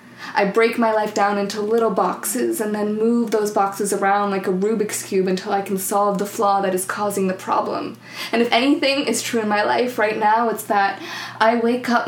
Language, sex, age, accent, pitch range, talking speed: English, female, 20-39, American, 200-230 Hz, 220 wpm